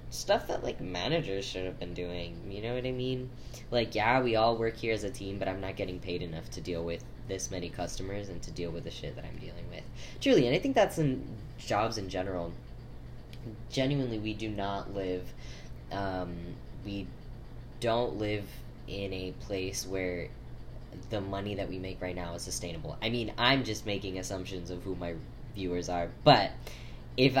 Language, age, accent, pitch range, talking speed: English, 10-29, American, 90-120 Hz, 195 wpm